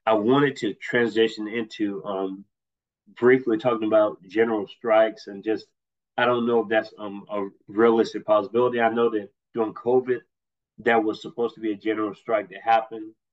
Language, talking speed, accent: English, 165 wpm, American